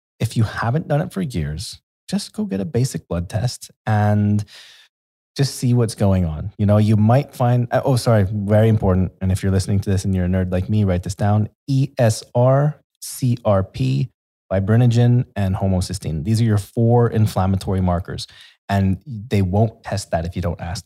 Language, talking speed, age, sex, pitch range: English, 185 wpm, 20-39, male, 95-120 Hz